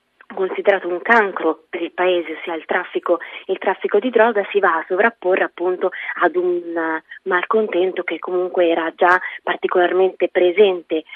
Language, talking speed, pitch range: Italian, 150 wpm, 175-210 Hz